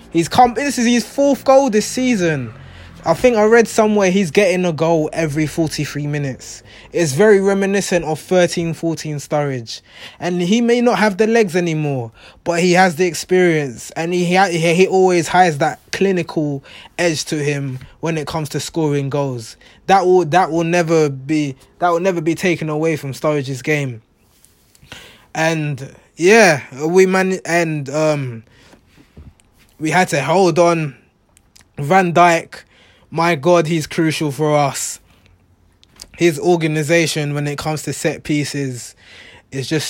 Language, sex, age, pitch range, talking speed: English, male, 20-39, 145-180 Hz, 155 wpm